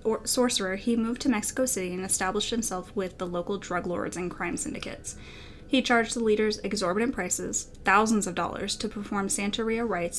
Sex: female